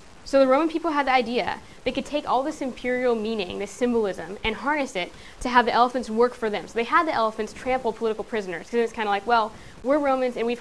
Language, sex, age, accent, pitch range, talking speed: English, female, 10-29, American, 205-245 Hz, 250 wpm